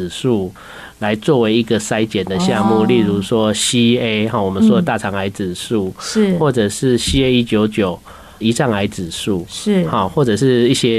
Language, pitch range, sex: Chinese, 105-145 Hz, male